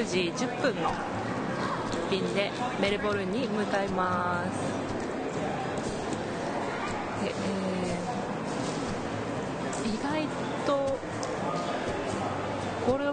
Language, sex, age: Japanese, female, 50-69